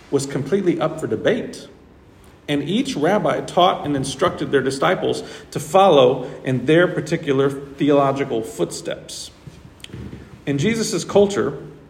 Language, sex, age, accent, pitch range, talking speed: English, male, 40-59, American, 130-175 Hz, 115 wpm